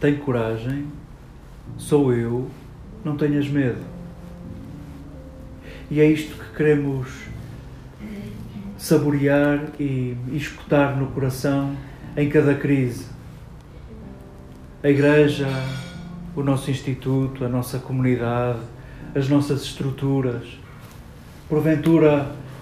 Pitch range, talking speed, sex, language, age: 125-145 Hz, 85 wpm, male, Portuguese, 40-59